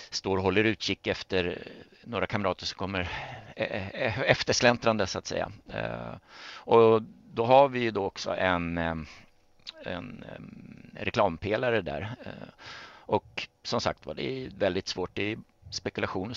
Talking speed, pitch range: 120 wpm, 85-110 Hz